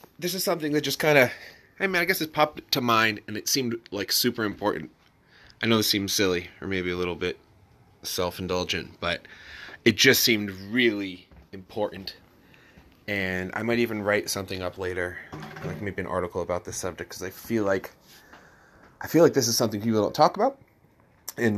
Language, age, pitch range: English, 30-49, 95-120 Hz